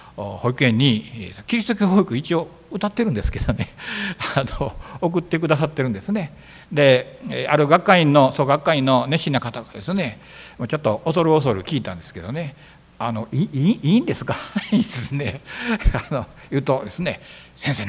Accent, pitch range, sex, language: native, 120-175 Hz, male, Japanese